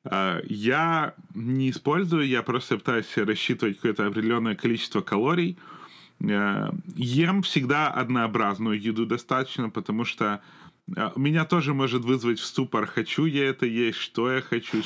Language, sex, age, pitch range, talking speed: Ukrainian, male, 30-49, 110-145 Hz, 135 wpm